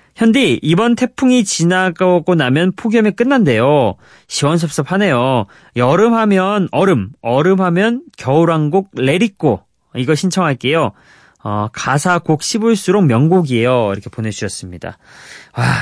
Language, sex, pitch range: Korean, male, 125-195 Hz